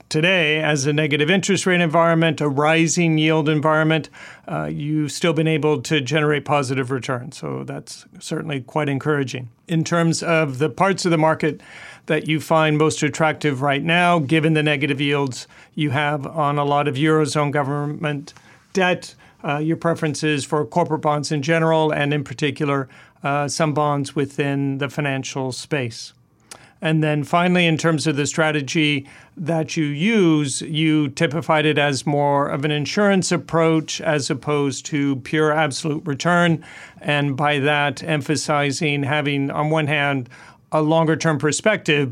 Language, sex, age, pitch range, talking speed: English, male, 40-59, 145-160 Hz, 155 wpm